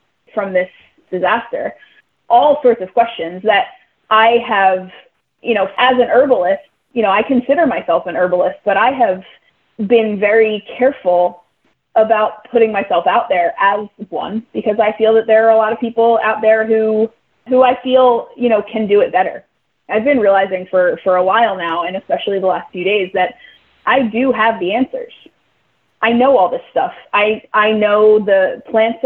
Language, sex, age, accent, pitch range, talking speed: English, female, 20-39, American, 190-230 Hz, 180 wpm